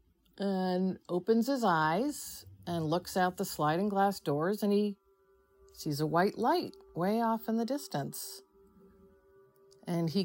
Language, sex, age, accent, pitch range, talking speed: English, female, 50-69, American, 160-220 Hz, 140 wpm